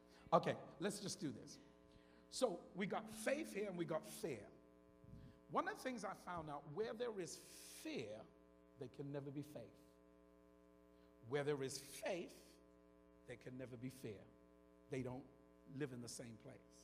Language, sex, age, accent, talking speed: English, male, 50-69, American, 165 wpm